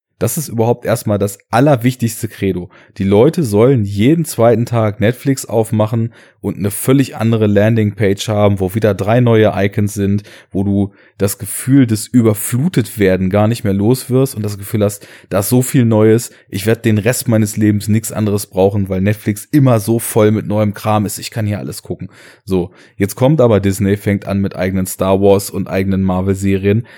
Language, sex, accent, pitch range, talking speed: German, male, German, 100-115 Hz, 190 wpm